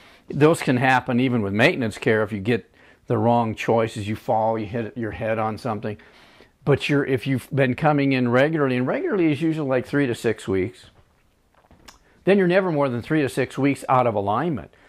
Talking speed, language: 200 wpm, English